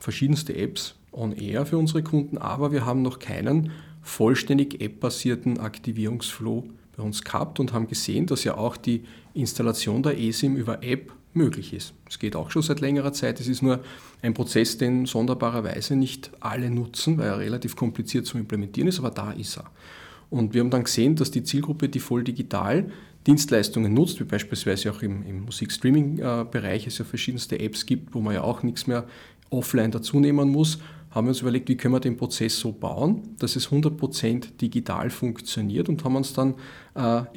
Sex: male